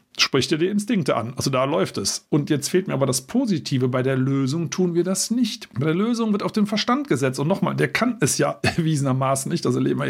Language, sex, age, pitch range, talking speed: German, male, 50-69, 125-165 Hz, 255 wpm